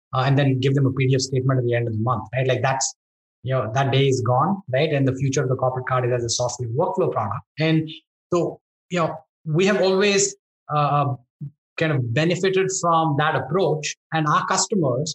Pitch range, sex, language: 130-160 Hz, male, English